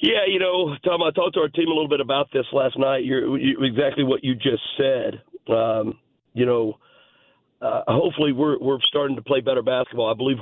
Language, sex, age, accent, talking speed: English, male, 50-69, American, 215 wpm